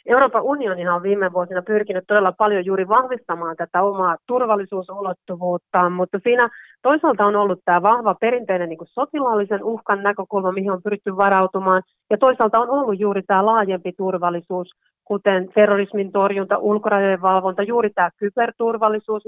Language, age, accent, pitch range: Finnish, 40-59, native, 180-215 Hz